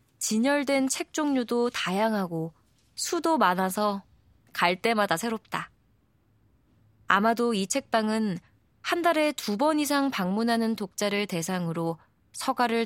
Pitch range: 160-240 Hz